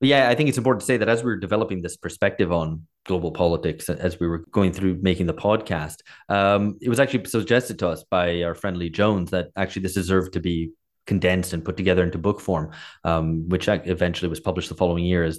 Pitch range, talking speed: 85-105 Hz, 230 wpm